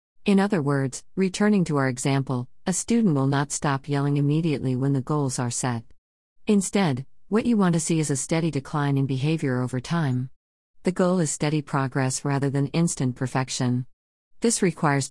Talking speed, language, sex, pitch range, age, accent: 175 wpm, English, female, 130-165 Hz, 50-69, American